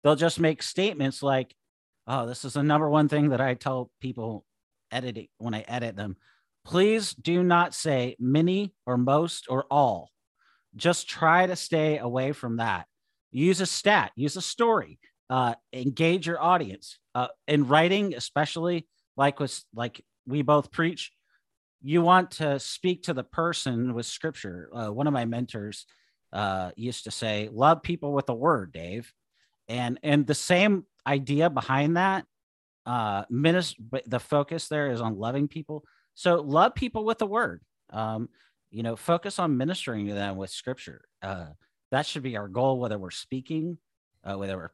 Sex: male